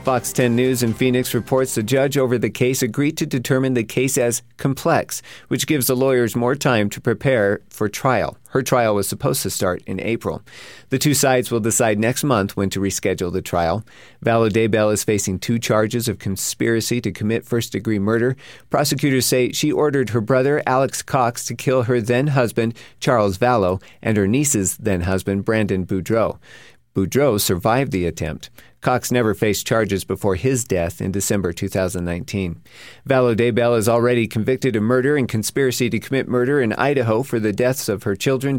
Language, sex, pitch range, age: English, male, 100-130 Hz, 50-69